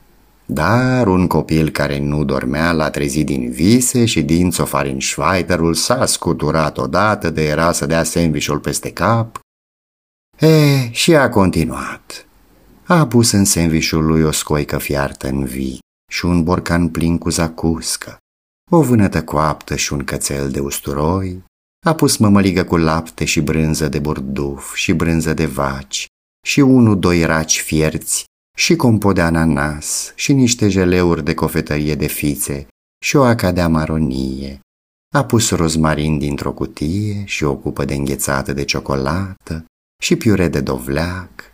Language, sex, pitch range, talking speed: Romanian, male, 70-95 Hz, 145 wpm